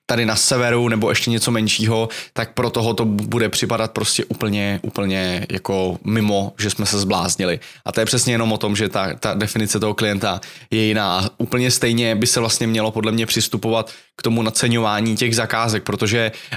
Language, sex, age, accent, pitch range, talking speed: Czech, male, 20-39, native, 105-120 Hz, 190 wpm